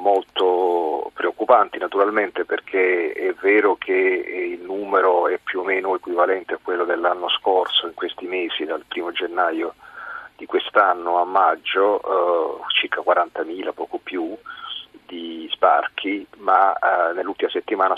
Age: 40-59